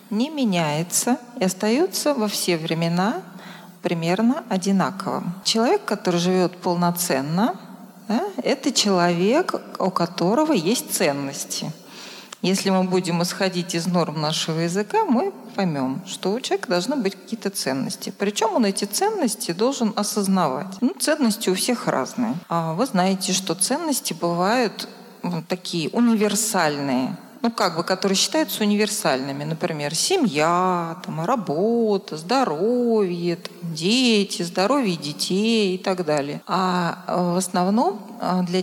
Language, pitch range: Russian, 175-225 Hz